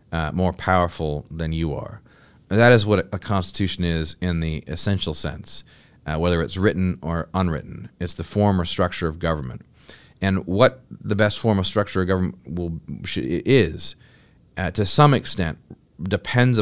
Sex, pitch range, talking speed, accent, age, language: male, 85-105 Hz, 170 wpm, American, 30-49, English